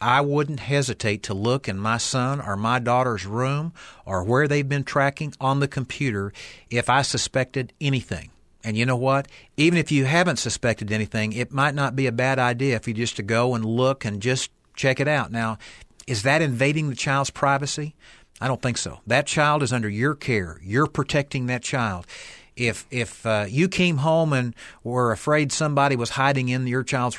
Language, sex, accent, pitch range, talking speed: English, male, American, 110-140 Hz, 195 wpm